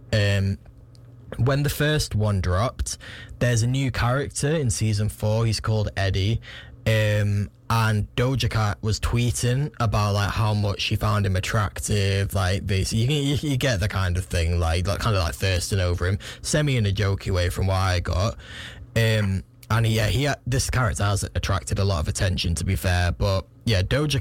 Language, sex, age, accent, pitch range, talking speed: English, male, 10-29, British, 100-120 Hz, 190 wpm